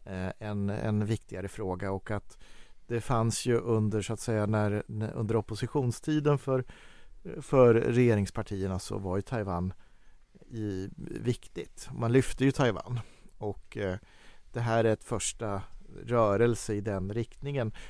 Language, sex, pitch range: Swedish, male, 105-130 Hz